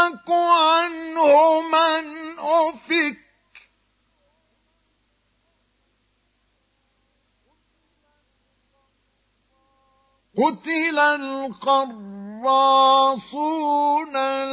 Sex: male